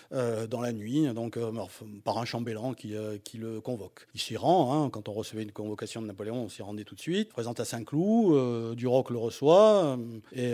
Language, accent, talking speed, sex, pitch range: French, French, 240 wpm, male, 115-160 Hz